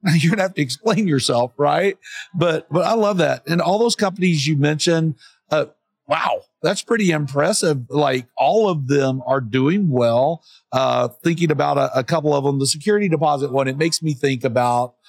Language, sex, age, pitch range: English, male, 50-69, 125-155 Hz